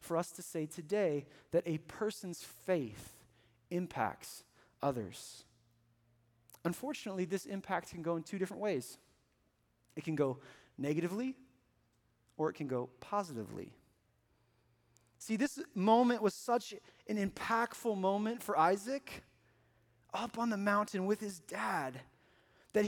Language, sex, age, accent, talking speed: English, male, 30-49, American, 125 wpm